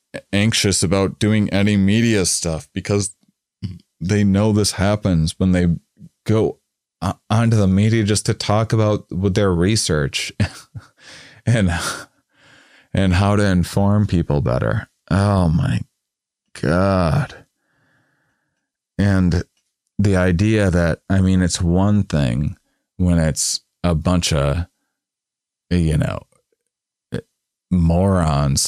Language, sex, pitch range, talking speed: English, male, 80-100 Hz, 105 wpm